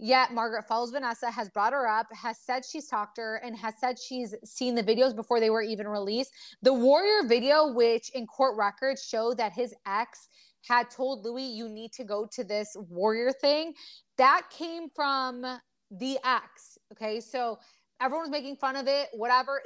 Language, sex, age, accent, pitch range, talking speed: English, female, 20-39, American, 210-260 Hz, 185 wpm